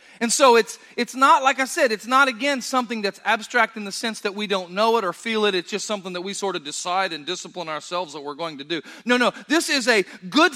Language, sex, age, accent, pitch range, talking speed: English, male, 40-59, American, 220-305 Hz, 265 wpm